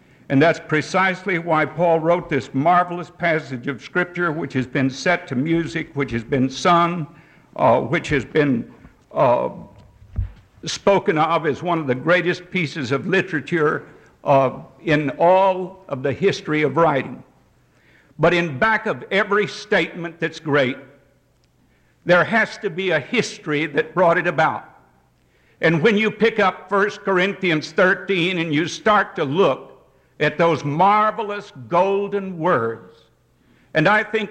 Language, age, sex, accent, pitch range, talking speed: English, 60-79, male, American, 140-190 Hz, 145 wpm